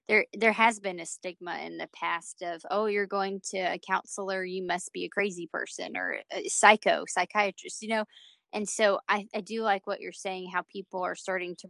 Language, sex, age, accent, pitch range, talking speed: English, female, 20-39, American, 180-205 Hz, 215 wpm